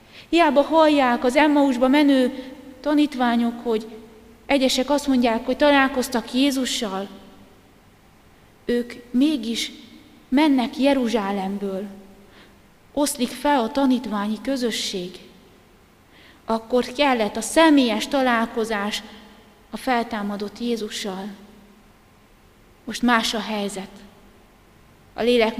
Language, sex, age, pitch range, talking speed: Hungarian, female, 30-49, 205-255 Hz, 85 wpm